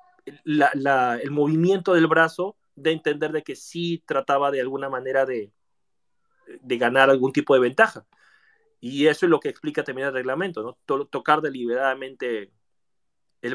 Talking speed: 155 wpm